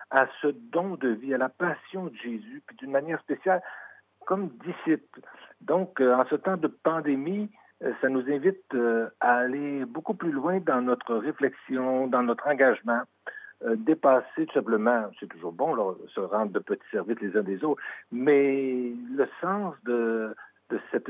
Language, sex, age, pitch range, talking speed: French, male, 60-79, 115-155 Hz, 175 wpm